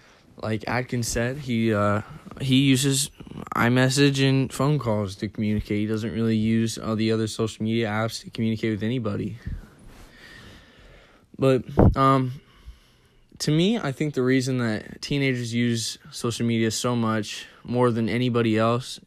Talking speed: 150 wpm